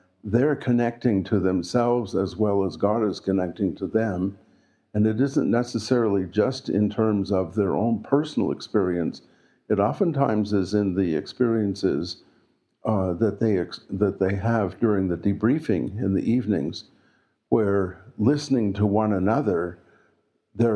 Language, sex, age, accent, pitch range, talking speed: English, male, 60-79, American, 95-115 Hz, 140 wpm